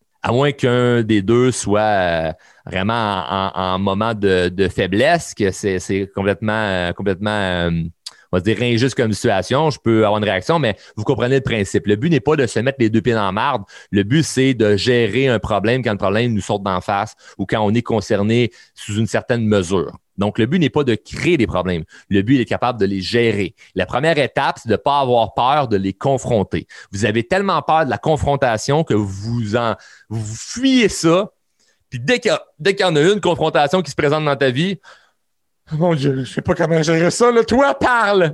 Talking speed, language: 225 wpm, French